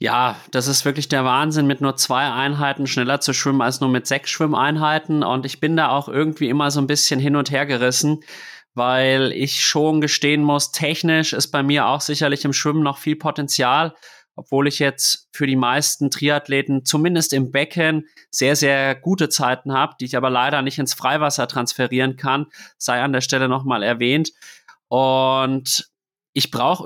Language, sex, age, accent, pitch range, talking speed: German, male, 30-49, German, 130-150 Hz, 180 wpm